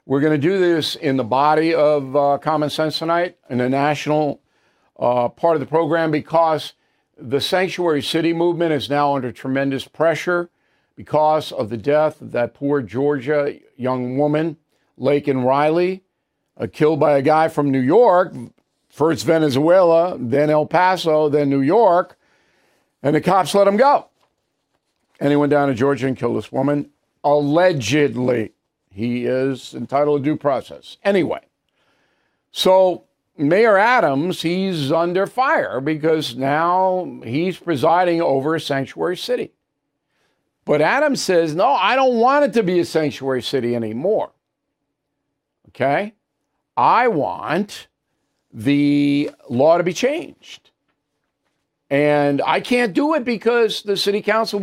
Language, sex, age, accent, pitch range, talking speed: English, male, 50-69, American, 140-175 Hz, 140 wpm